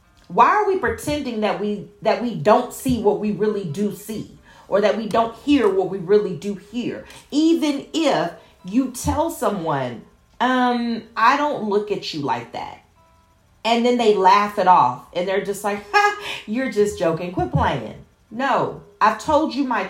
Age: 40-59